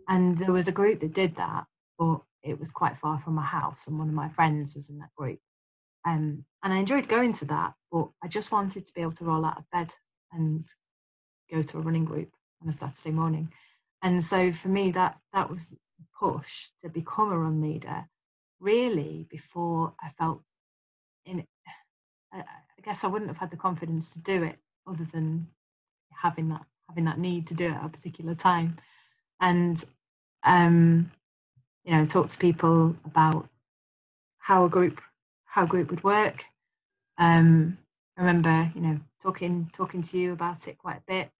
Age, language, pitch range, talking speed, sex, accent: 30-49, English, 155-180 Hz, 185 wpm, female, British